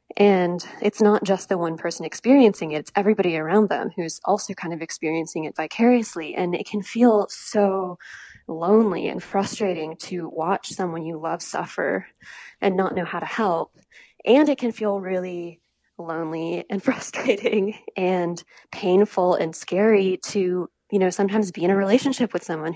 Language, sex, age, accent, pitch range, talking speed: English, female, 20-39, American, 170-220 Hz, 165 wpm